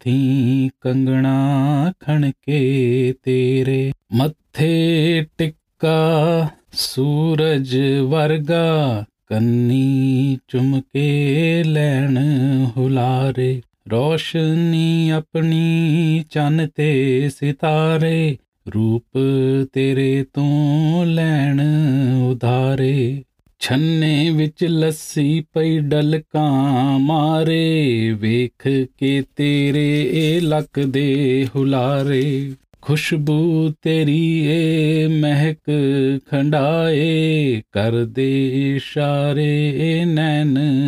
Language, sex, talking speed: Punjabi, male, 60 wpm